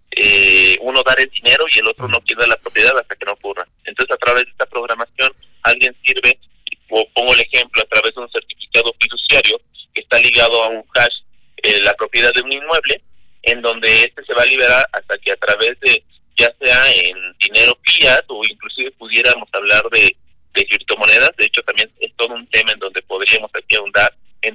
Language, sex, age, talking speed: Spanish, male, 30-49, 205 wpm